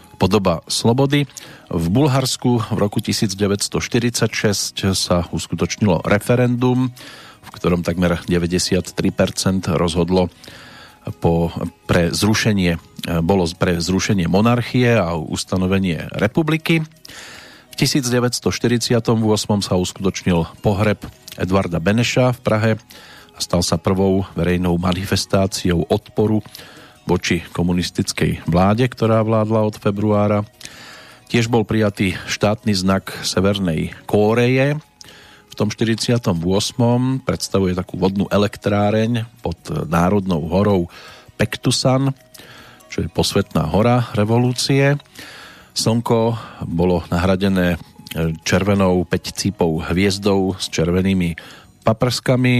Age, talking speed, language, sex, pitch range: 40-59, 90 wpm, Slovak, male, 90-120 Hz